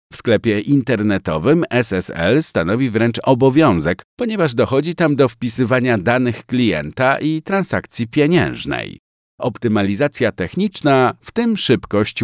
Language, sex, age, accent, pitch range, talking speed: Polish, male, 50-69, native, 100-150 Hz, 110 wpm